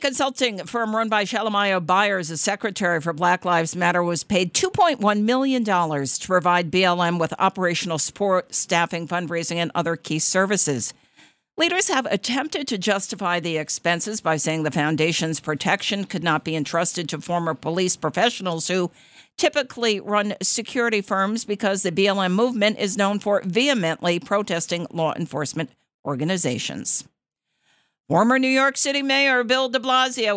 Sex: female